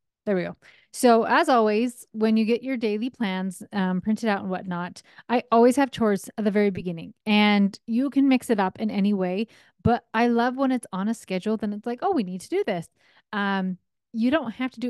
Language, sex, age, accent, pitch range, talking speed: English, female, 30-49, American, 190-235 Hz, 230 wpm